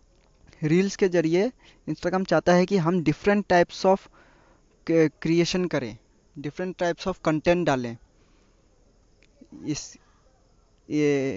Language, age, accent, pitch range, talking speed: Hindi, 20-39, native, 125-180 Hz, 105 wpm